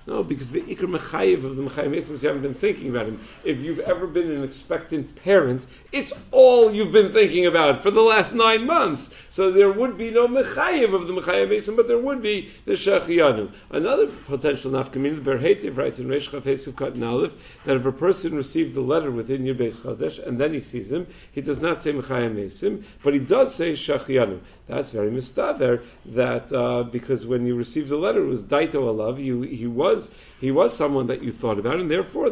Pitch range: 125-175 Hz